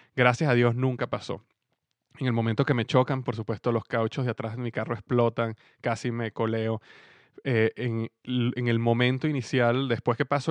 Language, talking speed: Spanish, 190 wpm